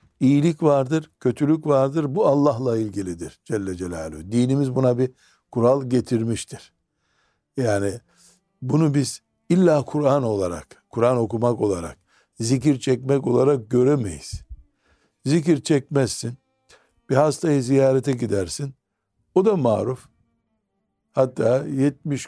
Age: 60-79